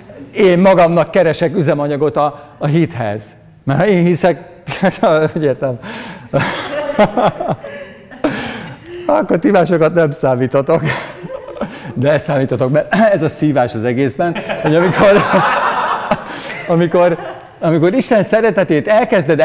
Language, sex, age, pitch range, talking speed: Hungarian, male, 50-69, 125-180 Hz, 100 wpm